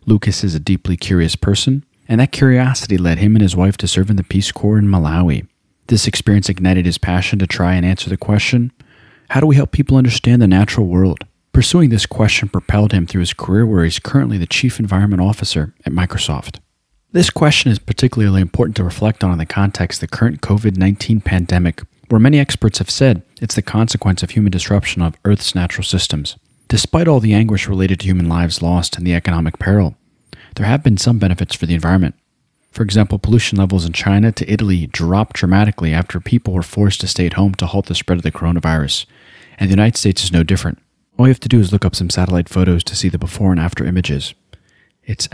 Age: 40-59